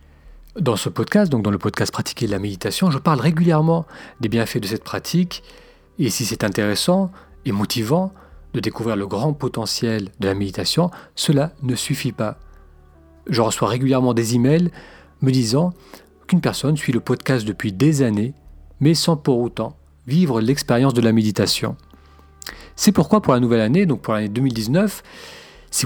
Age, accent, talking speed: 40-59, French, 165 wpm